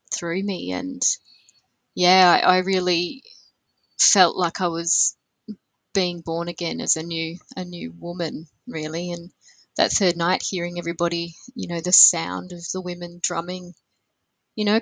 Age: 20-39